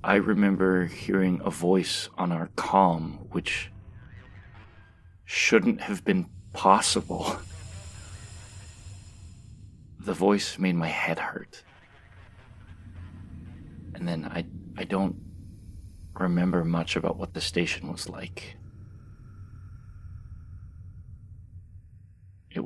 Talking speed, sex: 85 wpm, male